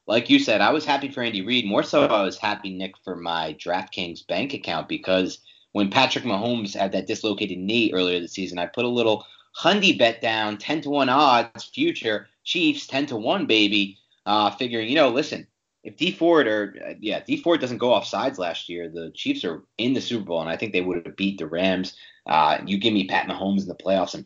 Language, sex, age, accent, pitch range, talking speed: English, male, 30-49, American, 95-130 Hz, 235 wpm